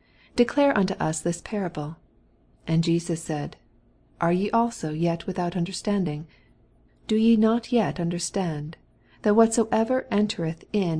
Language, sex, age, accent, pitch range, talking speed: English, female, 40-59, American, 160-205 Hz, 125 wpm